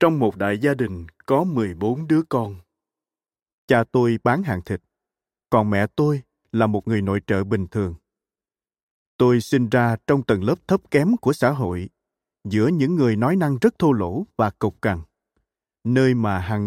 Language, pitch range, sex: Vietnamese, 105-135 Hz, male